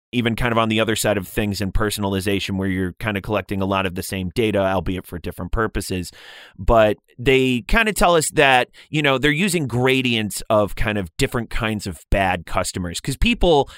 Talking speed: 210 wpm